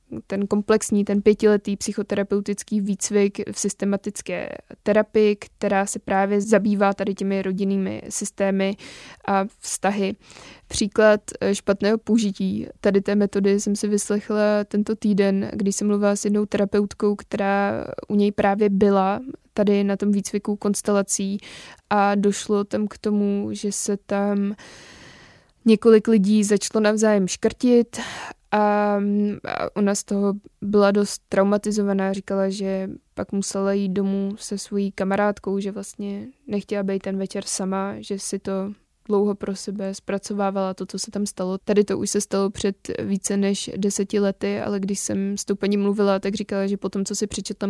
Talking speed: 150 wpm